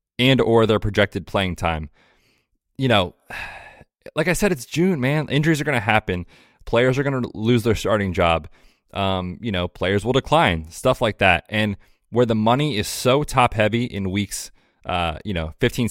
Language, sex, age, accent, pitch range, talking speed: English, male, 20-39, American, 100-125 Hz, 190 wpm